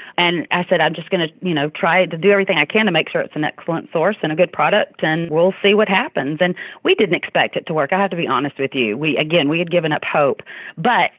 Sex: female